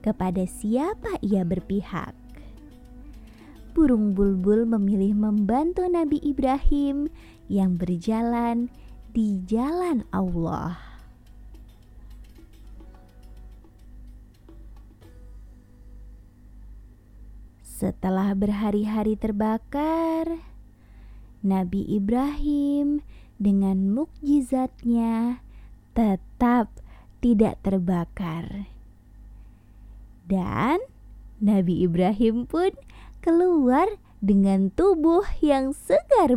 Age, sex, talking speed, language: 20-39, female, 55 wpm, Indonesian